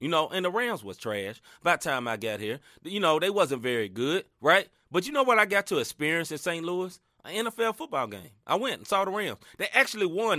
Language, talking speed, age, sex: English, 255 wpm, 30-49, male